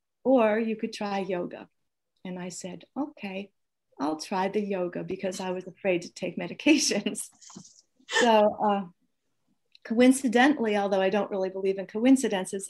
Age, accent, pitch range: 40-59, American, 190-220 Hz